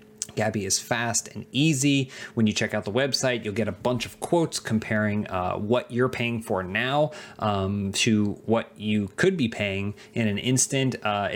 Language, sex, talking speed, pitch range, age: English, male, 185 wpm, 105-120 Hz, 30-49